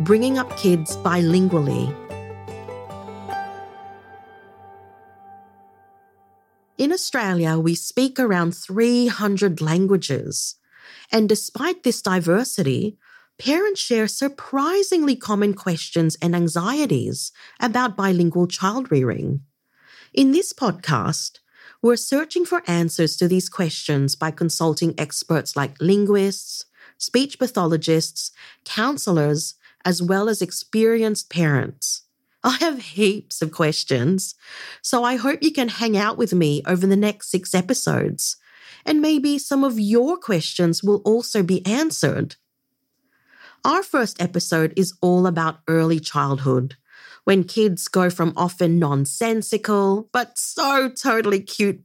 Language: English